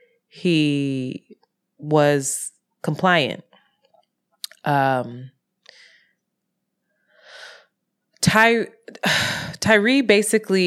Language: English